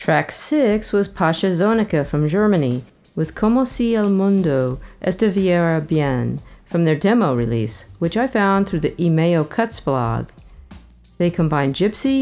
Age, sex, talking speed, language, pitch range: 40-59, female, 140 wpm, English, 150-200 Hz